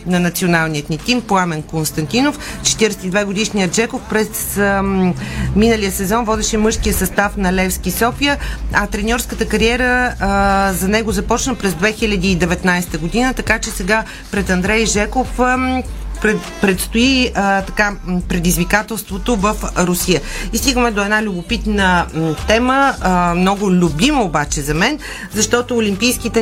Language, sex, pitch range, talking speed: Bulgarian, female, 180-230 Hz, 125 wpm